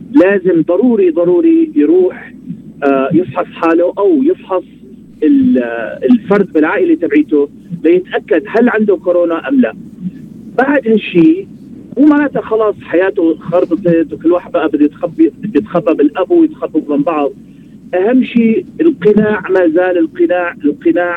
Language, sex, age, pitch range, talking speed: Arabic, male, 40-59, 175-250 Hz, 110 wpm